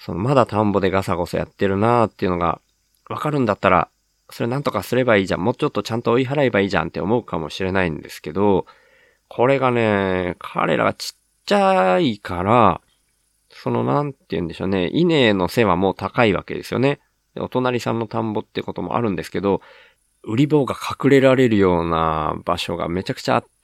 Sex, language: male, Japanese